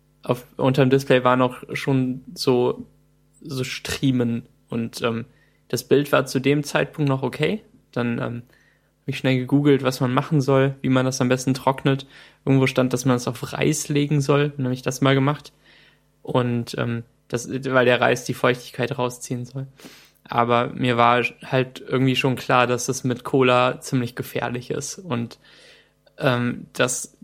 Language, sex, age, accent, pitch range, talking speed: German, male, 10-29, German, 125-140 Hz, 170 wpm